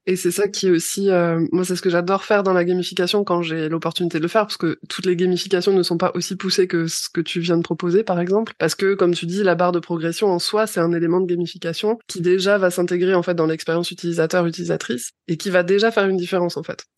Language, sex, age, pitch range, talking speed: French, female, 20-39, 170-195 Hz, 265 wpm